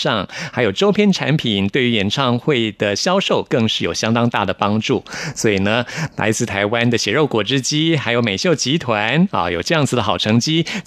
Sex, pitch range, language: male, 110-150 Hz, Chinese